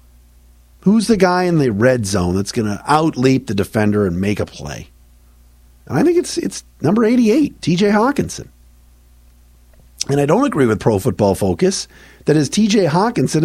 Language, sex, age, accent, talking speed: English, male, 50-69, American, 165 wpm